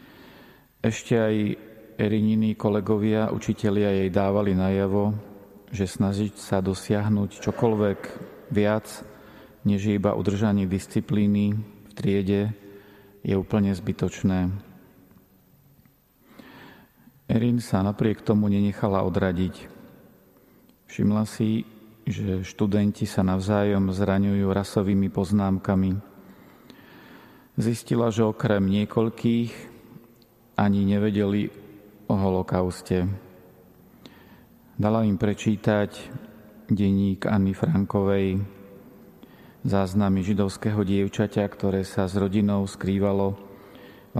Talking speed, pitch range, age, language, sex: 85 wpm, 100-105 Hz, 40-59, Slovak, male